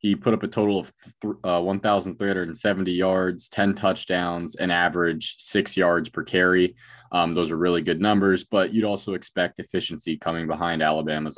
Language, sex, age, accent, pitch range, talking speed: English, male, 20-39, American, 80-95 Hz, 195 wpm